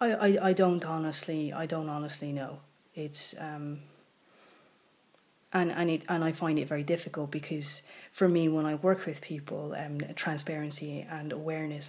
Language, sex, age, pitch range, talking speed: English, female, 30-49, 150-170 Hz, 155 wpm